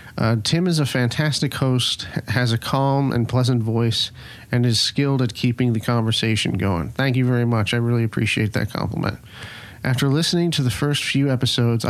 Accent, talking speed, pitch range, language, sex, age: American, 180 wpm, 120-135 Hz, English, male, 40-59